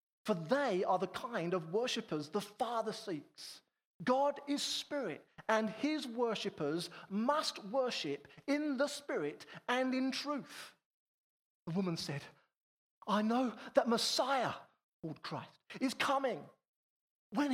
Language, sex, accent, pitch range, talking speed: English, male, British, 175-280 Hz, 125 wpm